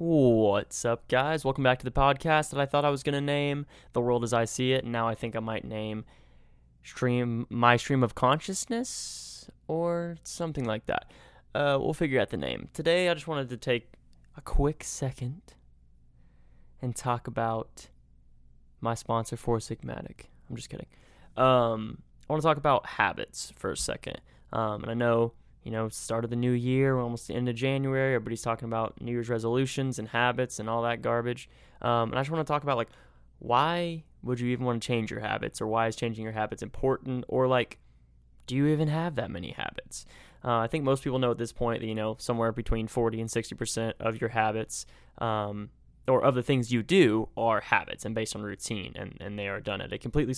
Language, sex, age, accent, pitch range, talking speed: English, male, 20-39, American, 110-130 Hz, 210 wpm